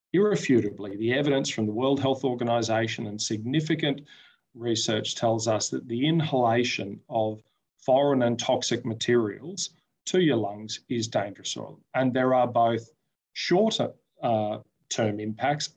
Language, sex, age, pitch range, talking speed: English, male, 40-59, 110-135 Hz, 125 wpm